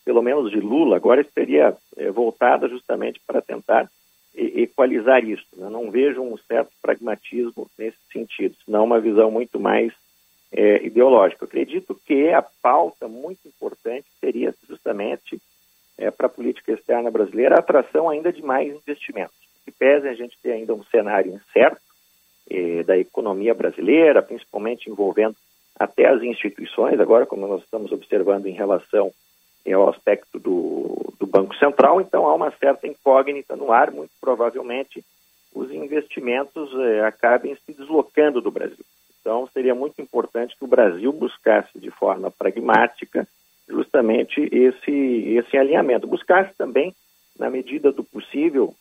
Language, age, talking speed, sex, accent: Portuguese, 50-69, 140 wpm, male, Brazilian